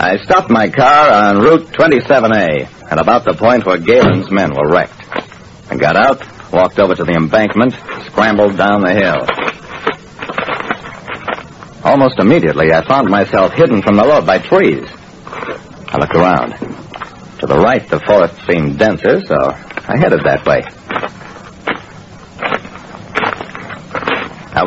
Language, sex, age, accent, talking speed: English, male, 60-79, American, 135 wpm